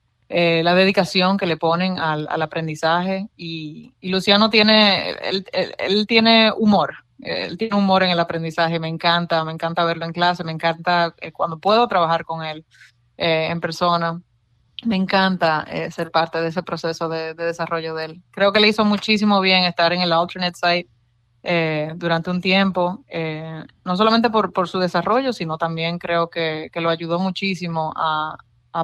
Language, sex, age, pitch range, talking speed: English, female, 30-49, 165-190 Hz, 180 wpm